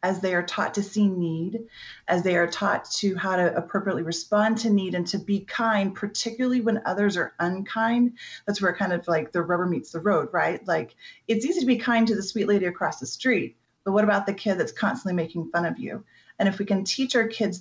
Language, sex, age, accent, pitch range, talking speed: English, female, 30-49, American, 175-210 Hz, 235 wpm